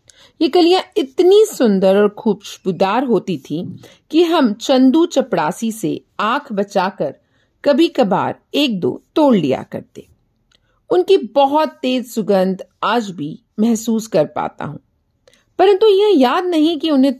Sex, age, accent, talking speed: female, 40-59, native, 135 wpm